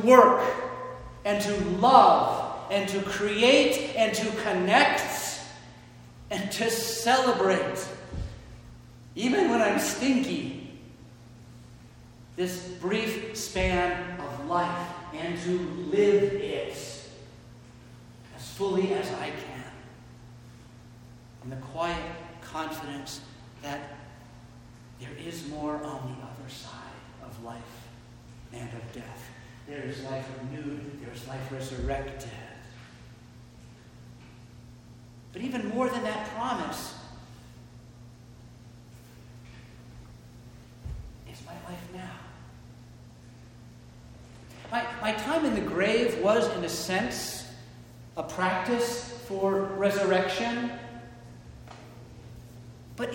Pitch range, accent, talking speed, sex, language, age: 120-200 Hz, American, 90 wpm, male, English, 50-69